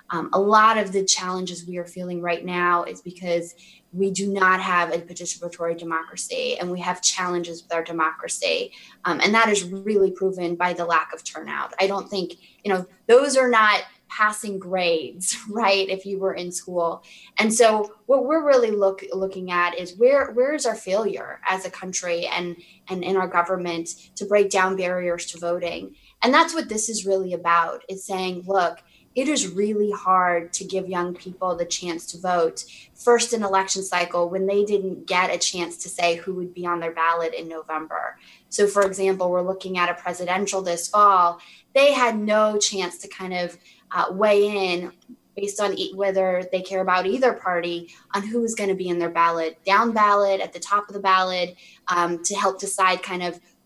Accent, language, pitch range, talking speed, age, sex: American, English, 175-205 Hz, 195 wpm, 20-39, female